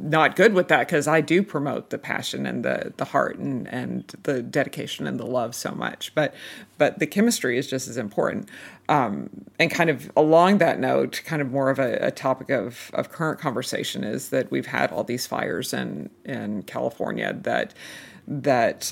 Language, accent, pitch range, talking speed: English, American, 125-155 Hz, 195 wpm